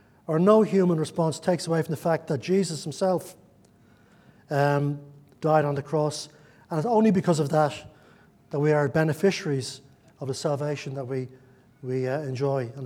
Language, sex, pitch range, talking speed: English, male, 135-170 Hz, 170 wpm